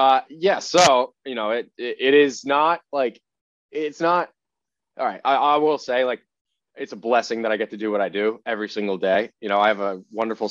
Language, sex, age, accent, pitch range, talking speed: English, male, 20-39, American, 100-130 Hz, 225 wpm